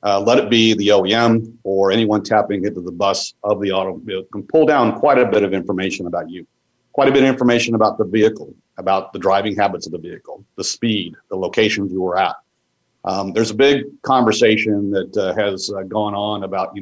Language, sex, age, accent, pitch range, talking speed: English, male, 50-69, American, 95-110 Hz, 215 wpm